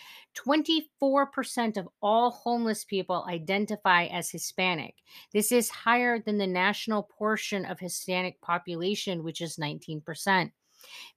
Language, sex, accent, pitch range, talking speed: English, female, American, 170-220 Hz, 105 wpm